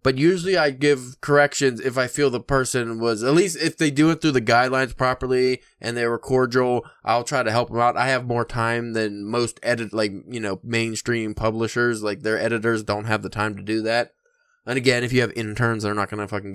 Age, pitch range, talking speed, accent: 20-39, 115-155 Hz, 230 wpm, American